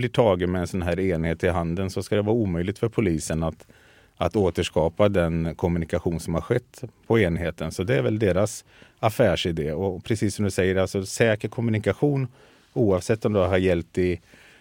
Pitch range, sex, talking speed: 90-110 Hz, male, 185 wpm